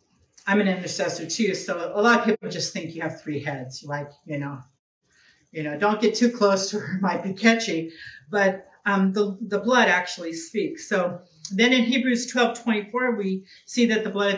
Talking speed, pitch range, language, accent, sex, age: 200 wpm, 175-225 Hz, English, American, female, 40-59